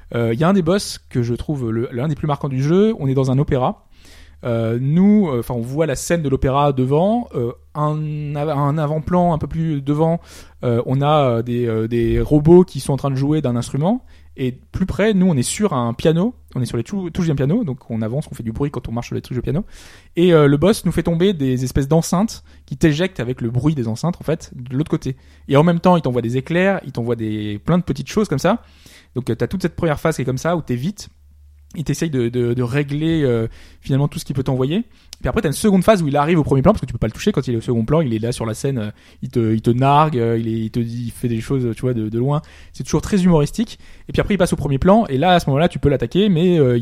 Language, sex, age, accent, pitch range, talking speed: French, male, 20-39, French, 120-170 Hz, 285 wpm